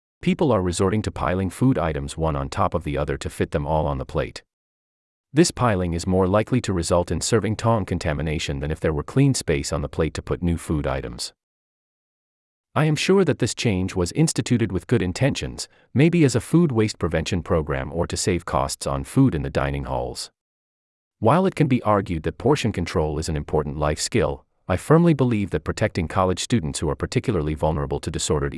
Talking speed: 210 wpm